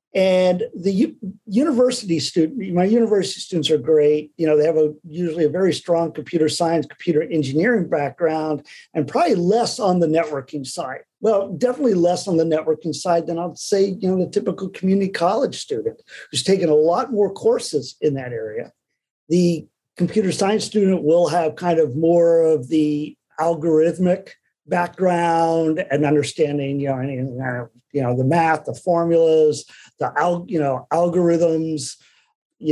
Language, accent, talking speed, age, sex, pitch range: English, American, 150 wpm, 50-69, male, 155-205 Hz